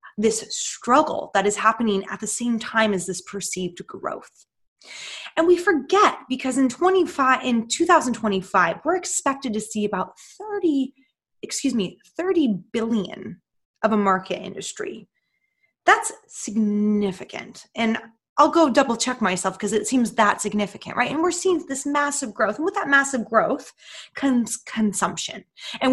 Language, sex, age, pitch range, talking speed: English, female, 20-39, 210-290 Hz, 150 wpm